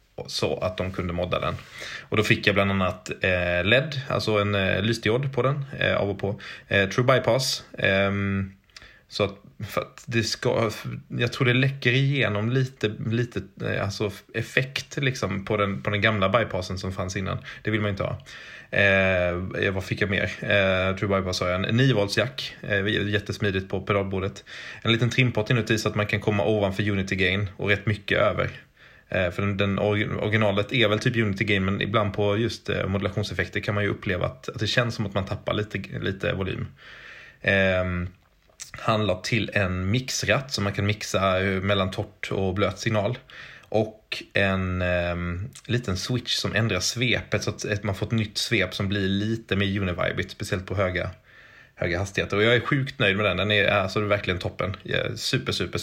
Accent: Swedish